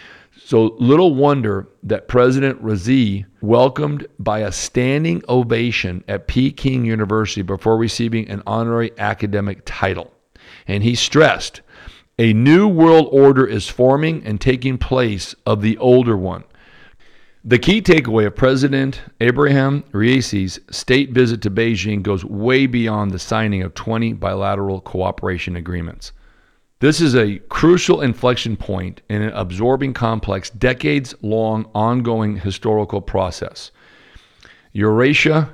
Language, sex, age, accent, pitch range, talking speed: English, male, 50-69, American, 105-130 Hz, 120 wpm